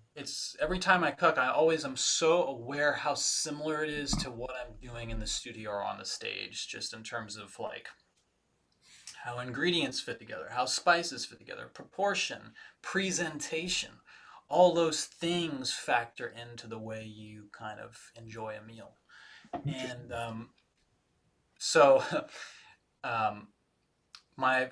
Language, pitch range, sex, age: English, 110-140 Hz, male, 20-39